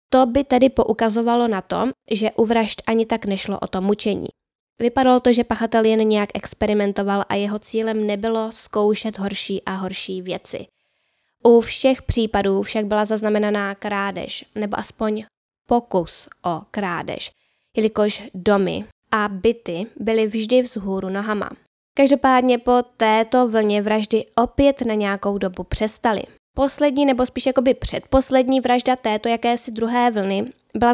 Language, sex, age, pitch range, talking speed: Czech, female, 10-29, 205-240 Hz, 140 wpm